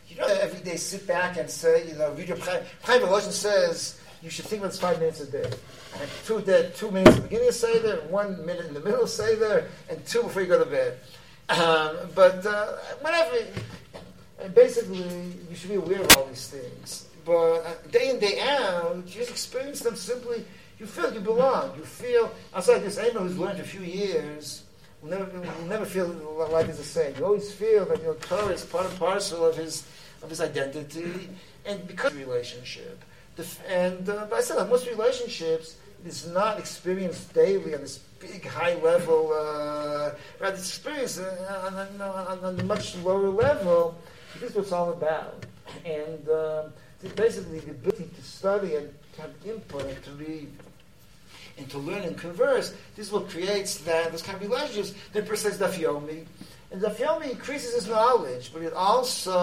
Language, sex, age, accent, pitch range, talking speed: English, male, 60-79, American, 160-225 Hz, 190 wpm